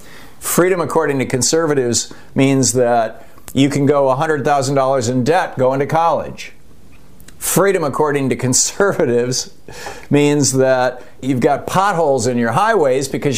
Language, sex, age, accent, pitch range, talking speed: English, male, 60-79, American, 110-150 Hz, 125 wpm